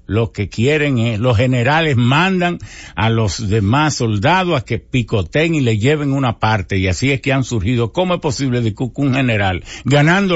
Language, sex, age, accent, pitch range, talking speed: English, male, 60-79, American, 95-145 Hz, 185 wpm